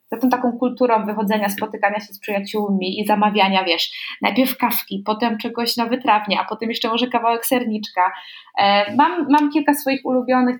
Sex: female